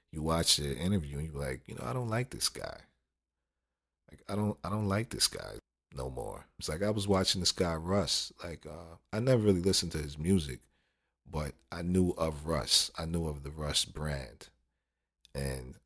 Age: 40-59